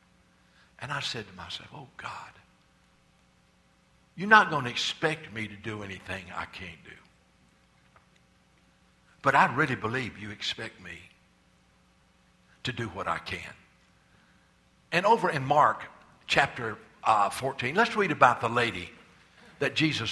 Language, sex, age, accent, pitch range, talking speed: English, male, 60-79, American, 110-160 Hz, 135 wpm